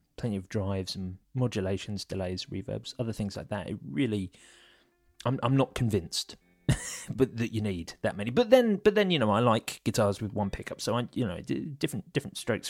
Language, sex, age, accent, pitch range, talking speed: English, male, 30-49, British, 100-165 Hz, 195 wpm